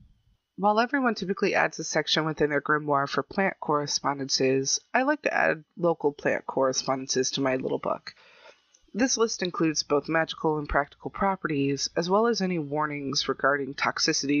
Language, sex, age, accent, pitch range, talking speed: English, female, 30-49, American, 140-180 Hz, 160 wpm